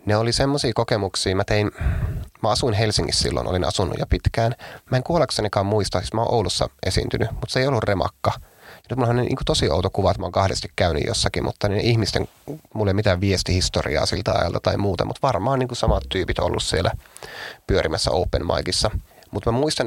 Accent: native